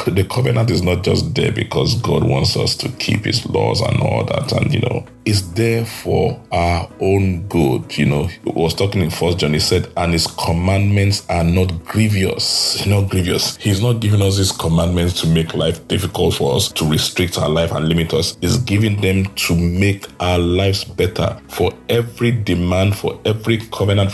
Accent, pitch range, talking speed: Nigerian, 85-110 Hz, 190 wpm